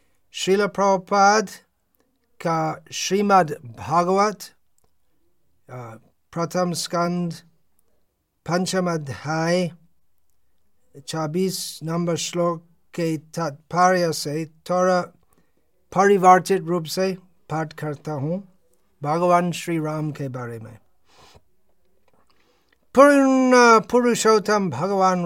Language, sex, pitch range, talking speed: Hindi, male, 160-195 Hz, 70 wpm